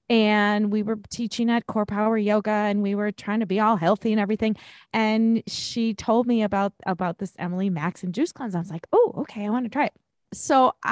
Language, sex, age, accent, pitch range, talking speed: English, female, 30-49, American, 200-245 Hz, 225 wpm